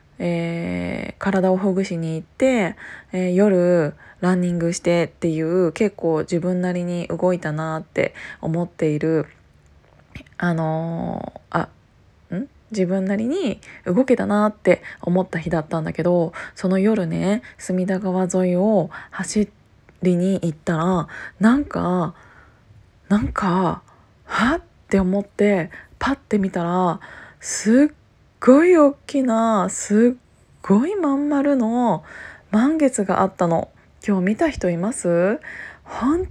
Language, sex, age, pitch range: Japanese, female, 20-39, 170-215 Hz